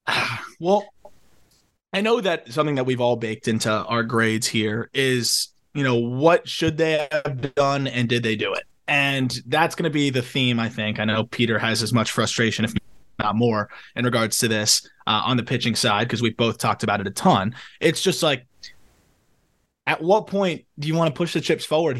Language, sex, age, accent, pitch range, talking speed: English, male, 20-39, American, 115-165 Hz, 205 wpm